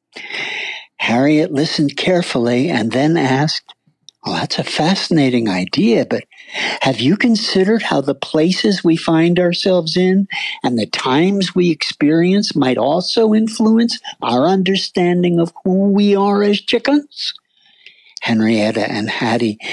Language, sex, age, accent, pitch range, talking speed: English, male, 60-79, American, 145-220 Hz, 125 wpm